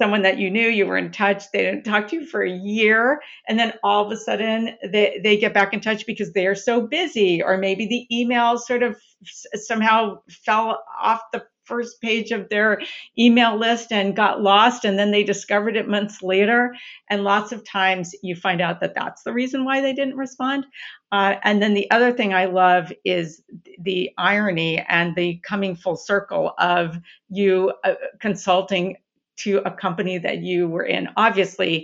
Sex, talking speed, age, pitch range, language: female, 190 wpm, 50-69, 190-230 Hz, English